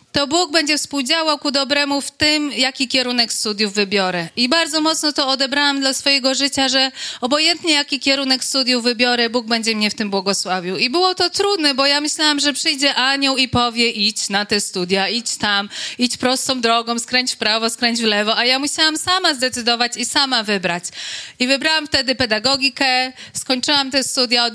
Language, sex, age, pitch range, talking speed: Polish, female, 30-49, 235-290 Hz, 185 wpm